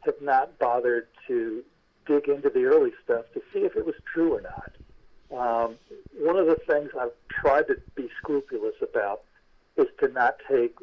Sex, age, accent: male, 50-69, American